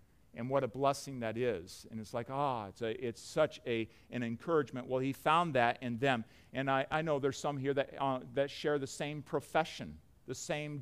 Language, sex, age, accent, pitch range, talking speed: English, male, 50-69, American, 135-175 Hz, 215 wpm